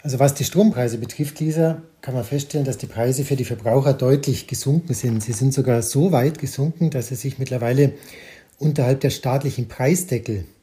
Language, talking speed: German, 180 wpm